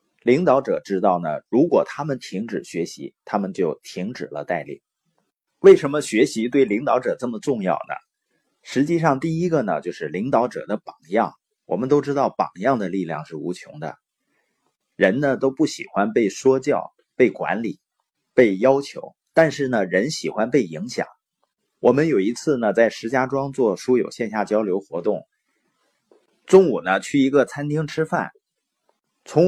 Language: Chinese